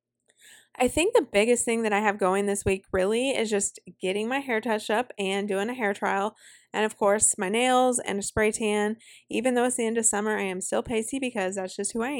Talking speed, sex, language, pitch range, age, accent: 240 wpm, female, English, 195-235 Hz, 20-39, American